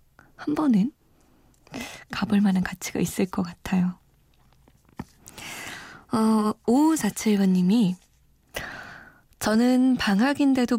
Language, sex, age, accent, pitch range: Korean, female, 20-39, native, 190-235 Hz